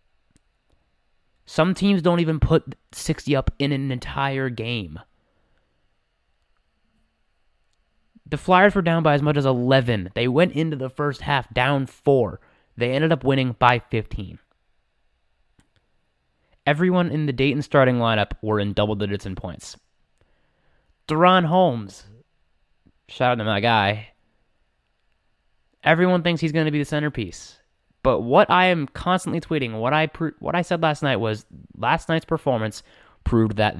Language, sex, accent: English, male, American